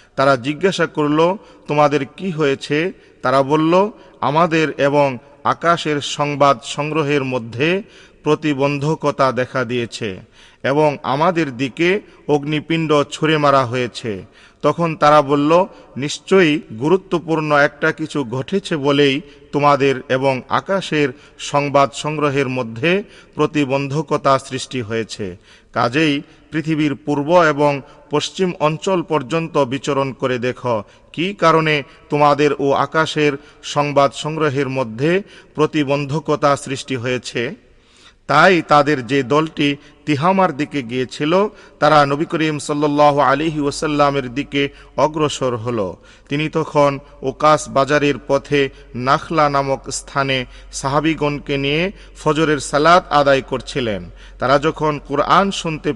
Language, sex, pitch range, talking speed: Bengali, male, 140-155 Hz, 95 wpm